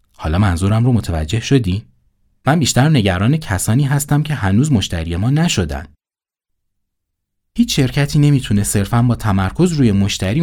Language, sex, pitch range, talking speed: Persian, male, 90-120 Hz, 130 wpm